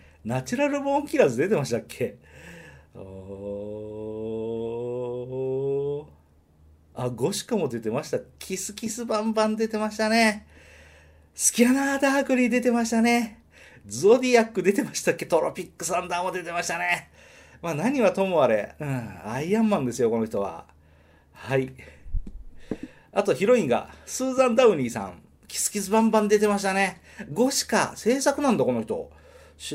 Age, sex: 40-59, male